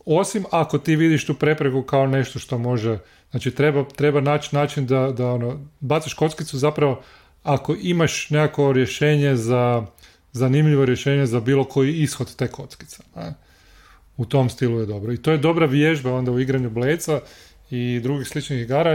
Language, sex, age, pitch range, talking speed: Croatian, male, 30-49, 120-150 Hz, 170 wpm